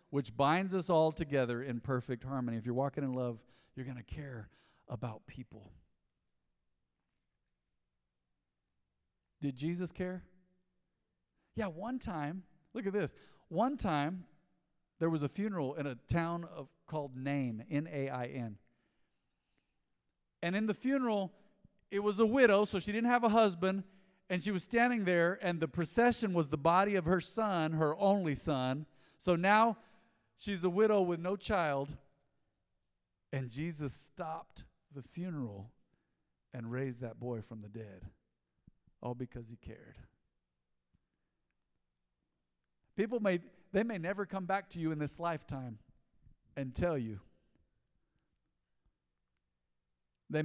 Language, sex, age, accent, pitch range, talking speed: English, male, 50-69, American, 115-180 Hz, 130 wpm